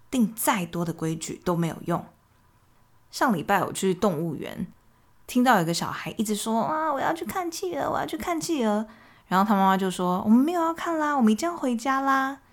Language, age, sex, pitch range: Chinese, 20-39, female, 165-245 Hz